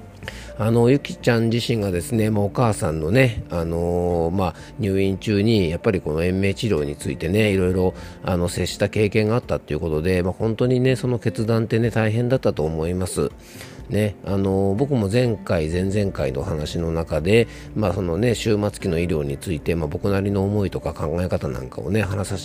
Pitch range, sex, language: 90-125 Hz, male, Japanese